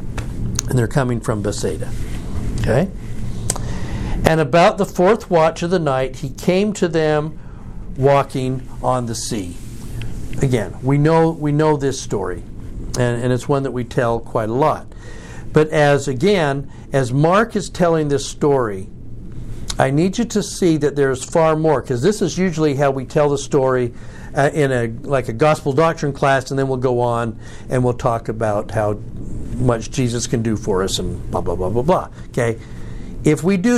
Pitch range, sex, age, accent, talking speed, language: 115-150 Hz, male, 60-79, American, 180 wpm, English